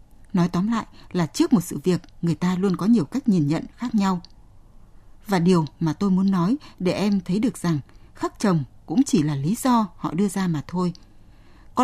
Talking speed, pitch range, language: 215 wpm, 155-220 Hz, Vietnamese